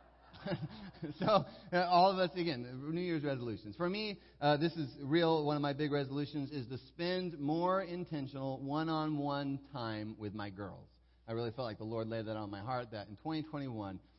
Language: English